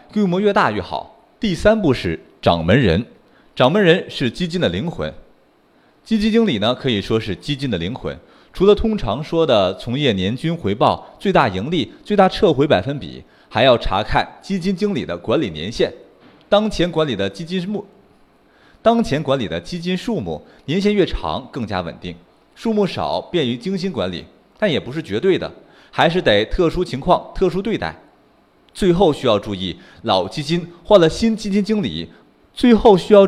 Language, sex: Chinese, male